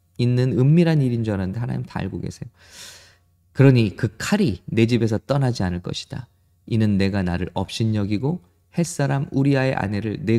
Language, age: English, 20-39